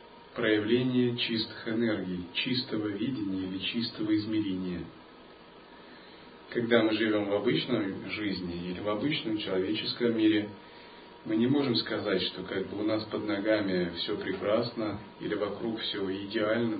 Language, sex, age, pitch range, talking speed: Russian, male, 40-59, 100-120 Hz, 130 wpm